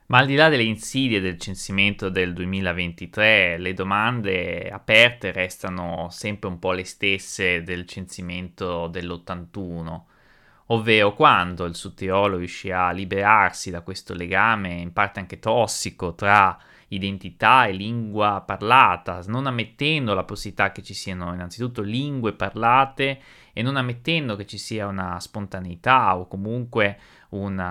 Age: 20-39